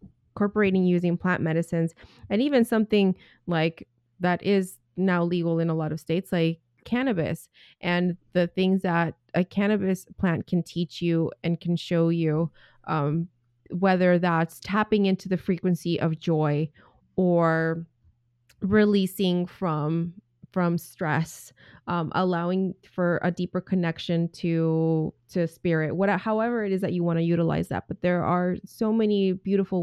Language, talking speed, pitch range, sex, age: English, 145 wpm, 165-200 Hz, female, 20-39